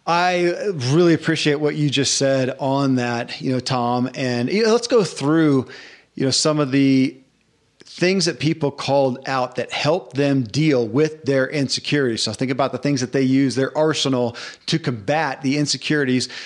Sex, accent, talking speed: male, American, 180 wpm